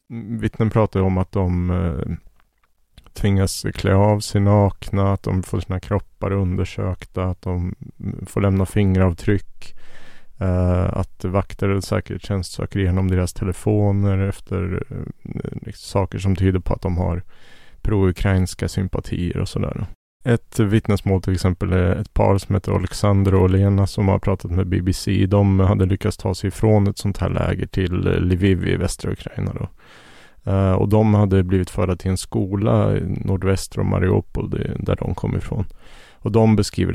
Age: 30-49